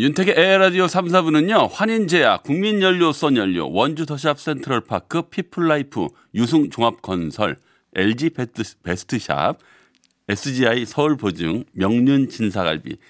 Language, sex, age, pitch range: Korean, male, 40-59, 105-165 Hz